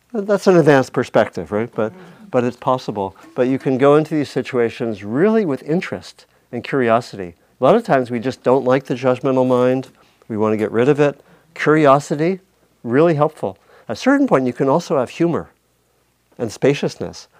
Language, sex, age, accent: English, male, 50-69, American